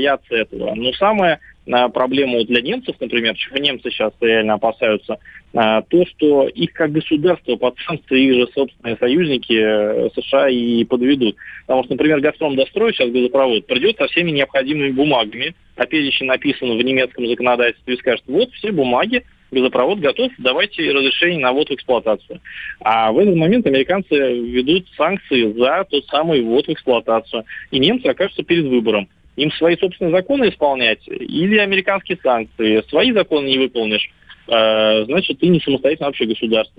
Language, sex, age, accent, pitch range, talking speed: Russian, male, 20-39, native, 115-155 Hz, 155 wpm